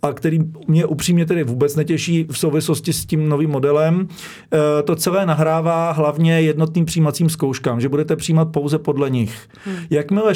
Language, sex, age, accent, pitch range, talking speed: Czech, male, 40-59, native, 140-170 Hz, 150 wpm